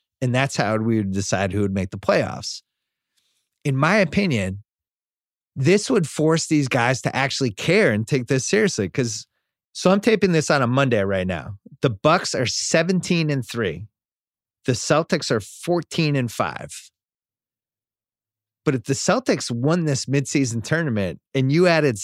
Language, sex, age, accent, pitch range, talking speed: English, male, 30-49, American, 110-150 Hz, 160 wpm